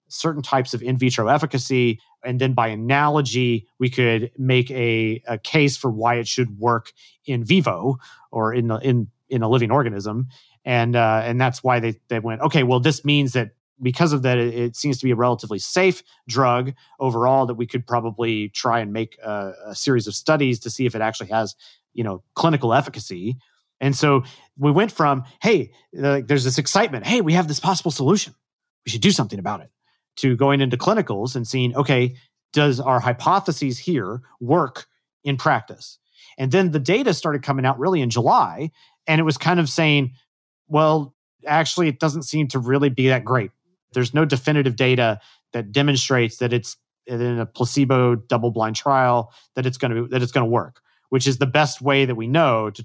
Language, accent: English, American